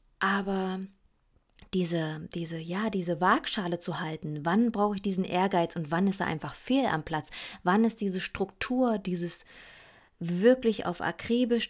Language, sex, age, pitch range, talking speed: German, female, 20-39, 175-220 Hz, 140 wpm